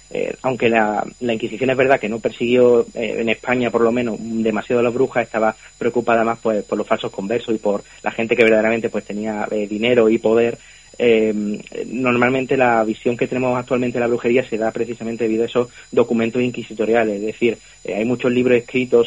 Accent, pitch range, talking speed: Spanish, 105-120 Hz, 205 wpm